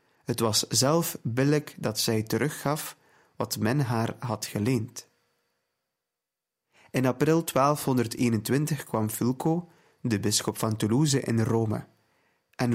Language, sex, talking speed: Dutch, male, 115 wpm